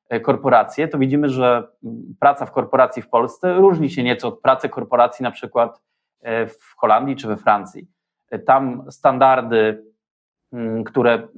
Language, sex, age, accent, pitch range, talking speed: Polish, male, 20-39, native, 115-135 Hz, 130 wpm